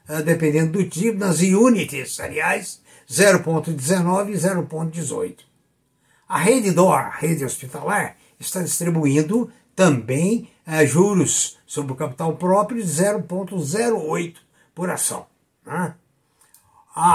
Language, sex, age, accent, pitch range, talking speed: Portuguese, male, 60-79, Brazilian, 155-205 Hz, 110 wpm